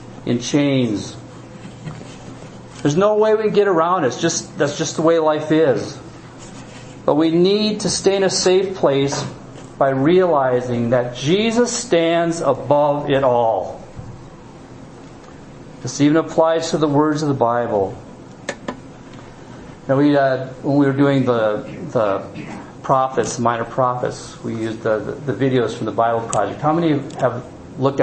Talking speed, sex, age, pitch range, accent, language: 150 wpm, male, 50-69, 120-160 Hz, American, English